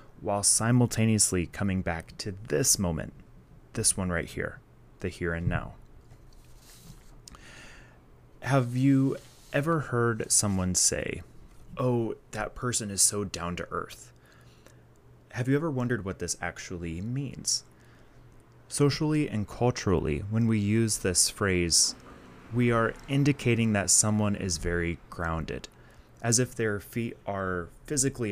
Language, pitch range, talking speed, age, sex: English, 85-115 Hz, 125 wpm, 20-39, male